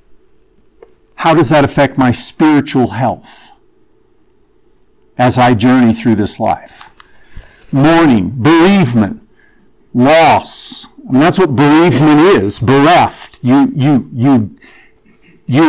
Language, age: English, 50-69